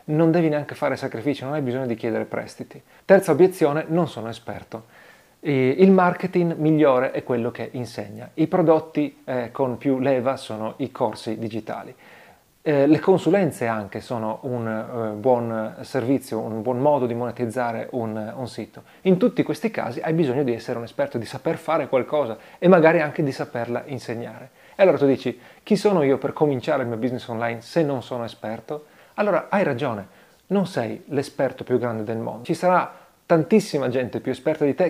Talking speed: 175 wpm